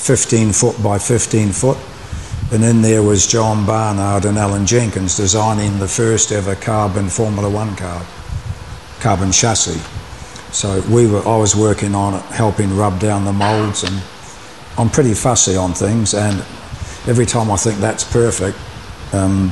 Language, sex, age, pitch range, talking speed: English, male, 50-69, 100-115 Hz, 155 wpm